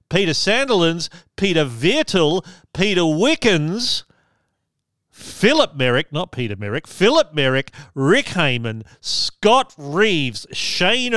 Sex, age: male, 40-59